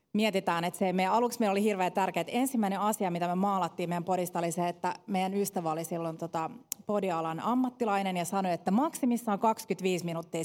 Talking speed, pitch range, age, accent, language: 185 wpm, 175-215 Hz, 30-49, native, Finnish